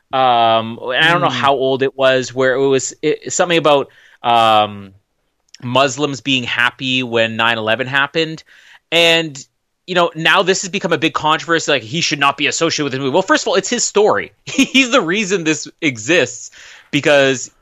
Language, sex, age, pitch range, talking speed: English, male, 30-49, 140-210 Hz, 185 wpm